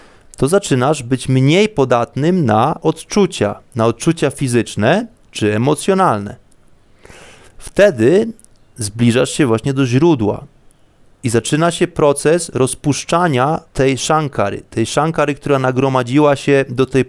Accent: native